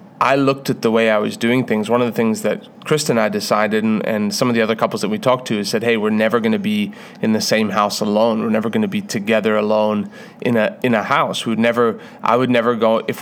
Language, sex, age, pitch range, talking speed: English, male, 30-49, 110-130 Hz, 275 wpm